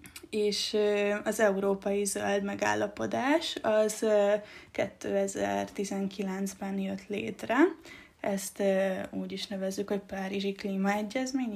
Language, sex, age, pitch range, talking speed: Hungarian, female, 20-39, 190-210 Hz, 85 wpm